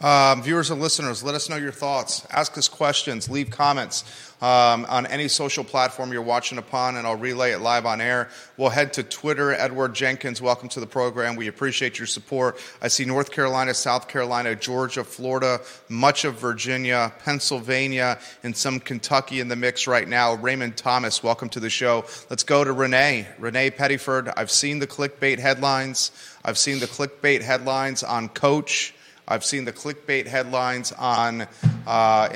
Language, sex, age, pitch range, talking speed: English, male, 30-49, 115-135 Hz, 175 wpm